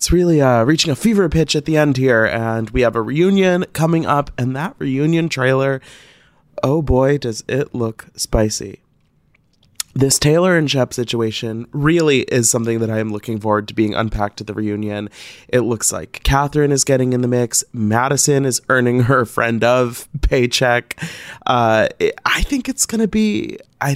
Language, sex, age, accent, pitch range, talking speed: English, male, 20-39, American, 115-160 Hz, 180 wpm